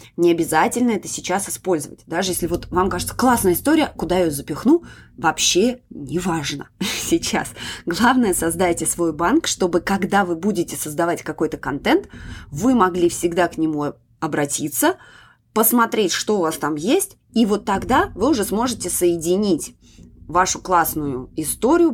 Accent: native